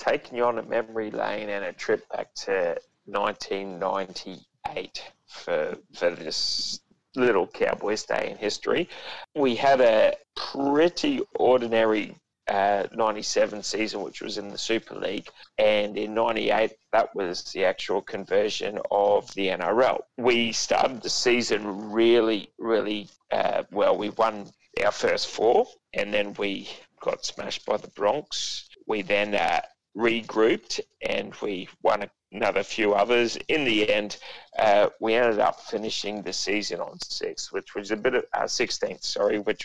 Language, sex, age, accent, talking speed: English, male, 30-49, Australian, 150 wpm